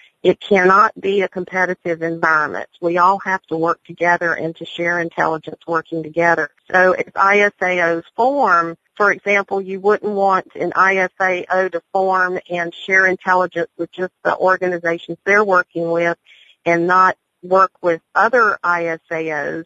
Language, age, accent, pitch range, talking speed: English, 50-69, American, 165-185 Hz, 145 wpm